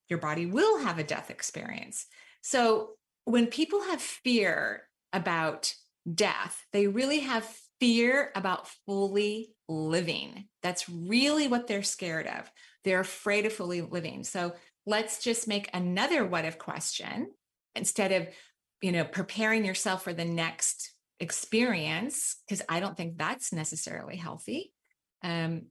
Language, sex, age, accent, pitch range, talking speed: English, female, 30-49, American, 175-230 Hz, 135 wpm